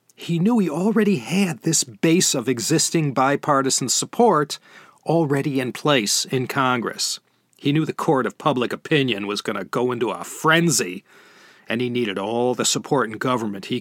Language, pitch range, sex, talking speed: English, 120-165 Hz, male, 170 wpm